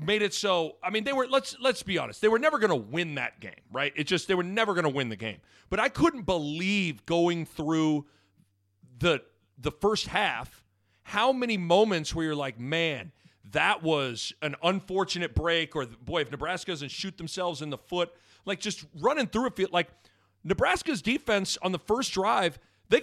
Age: 40-59